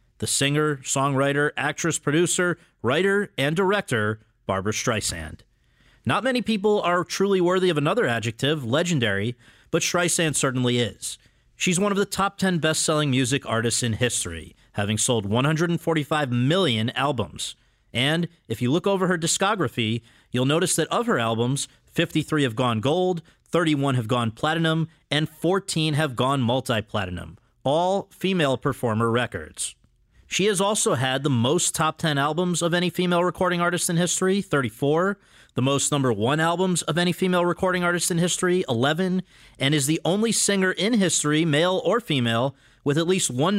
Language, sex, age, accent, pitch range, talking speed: English, male, 40-59, American, 125-175 Hz, 155 wpm